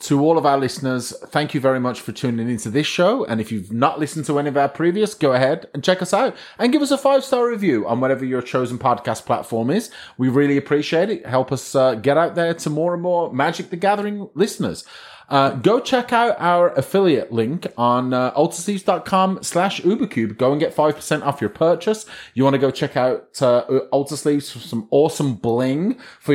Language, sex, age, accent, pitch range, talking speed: English, male, 30-49, British, 125-175 Hz, 210 wpm